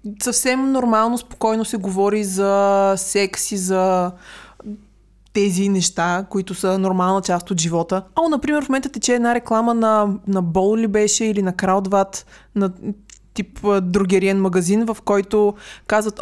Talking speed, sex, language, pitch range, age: 140 wpm, female, Bulgarian, 190-220 Hz, 20-39